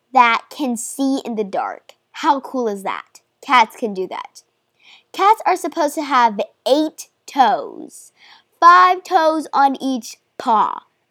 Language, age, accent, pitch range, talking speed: English, 10-29, American, 235-335 Hz, 140 wpm